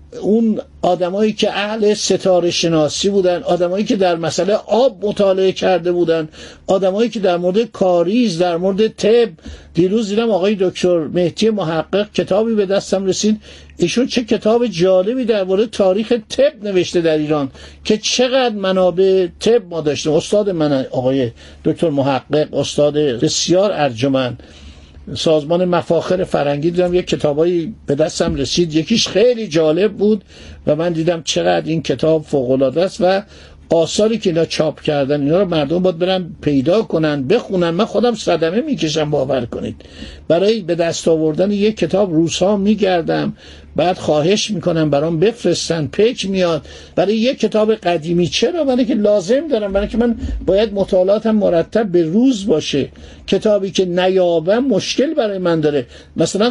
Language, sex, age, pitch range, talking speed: Persian, male, 60-79, 160-210 Hz, 150 wpm